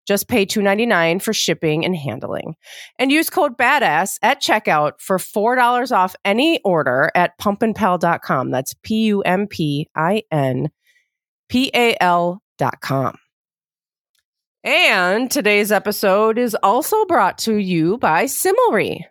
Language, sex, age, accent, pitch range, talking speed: English, female, 30-49, American, 175-240 Hz, 110 wpm